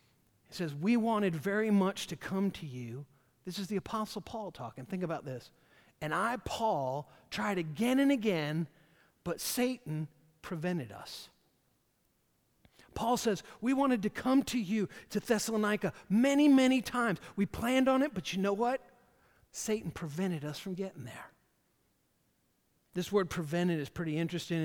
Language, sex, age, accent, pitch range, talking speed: English, male, 50-69, American, 155-210 Hz, 155 wpm